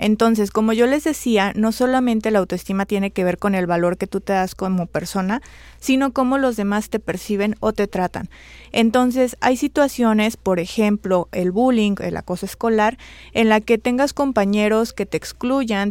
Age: 30-49